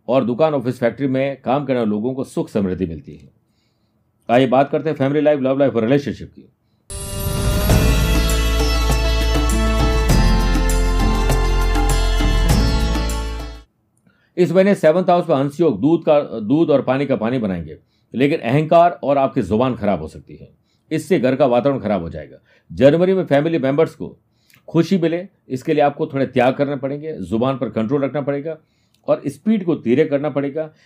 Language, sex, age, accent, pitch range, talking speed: Hindi, male, 50-69, native, 110-155 Hz, 130 wpm